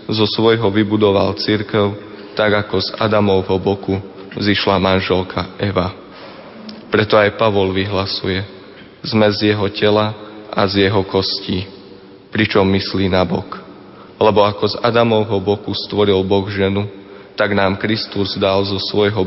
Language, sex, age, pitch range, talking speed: Slovak, male, 20-39, 95-105 Hz, 130 wpm